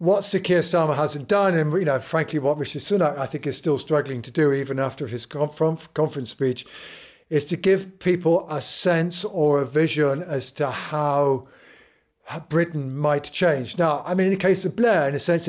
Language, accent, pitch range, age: English, British, 145-170 Hz, 50-69